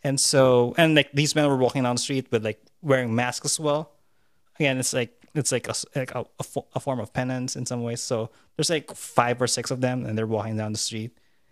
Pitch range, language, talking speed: 115-135 Hz, English, 240 wpm